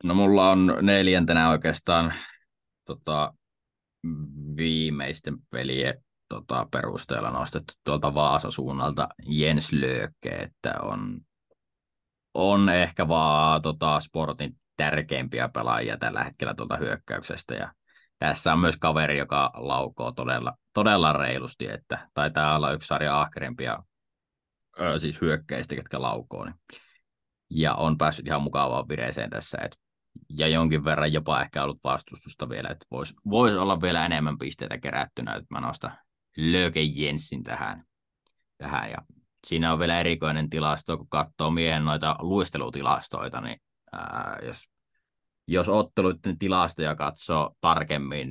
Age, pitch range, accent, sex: 20-39, 75-80 Hz, native, male